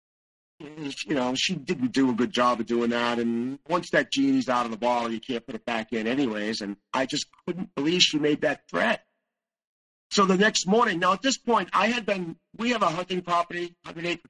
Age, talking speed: 50-69, 220 wpm